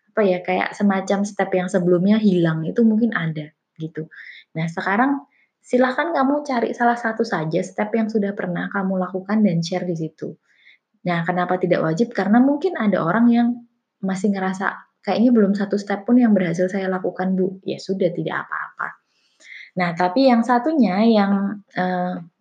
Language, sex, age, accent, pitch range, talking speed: Indonesian, female, 20-39, native, 180-220 Hz, 160 wpm